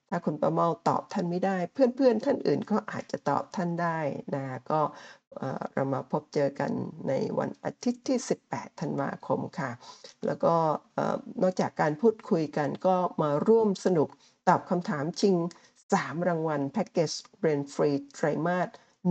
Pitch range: 150-200 Hz